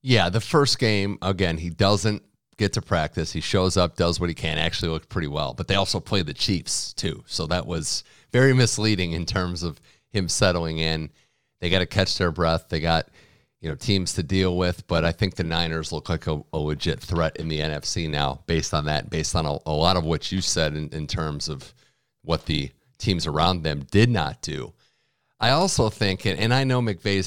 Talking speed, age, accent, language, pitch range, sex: 220 wpm, 40-59, American, English, 80-100 Hz, male